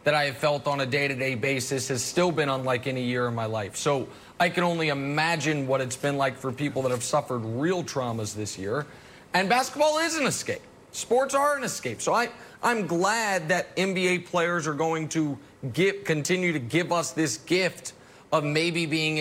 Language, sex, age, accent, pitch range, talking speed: English, male, 30-49, American, 140-205 Hz, 200 wpm